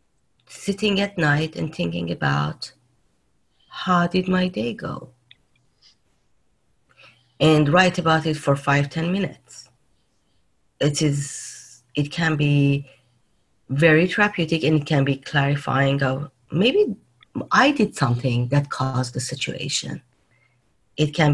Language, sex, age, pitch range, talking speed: English, female, 30-49, 125-165 Hz, 120 wpm